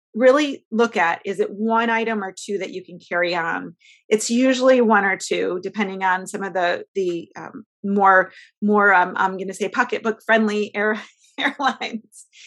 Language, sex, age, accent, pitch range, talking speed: English, female, 30-49, American, 190-240 Hz, 175 wpm